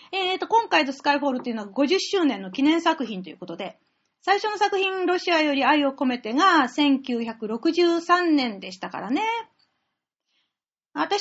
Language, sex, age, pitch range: Japanese, female, 40-59, 230-325 Hz